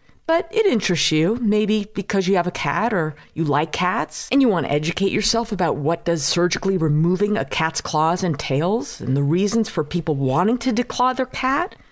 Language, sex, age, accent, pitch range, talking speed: English, female, 50-69, American, 175-255 Hz, 195 wpm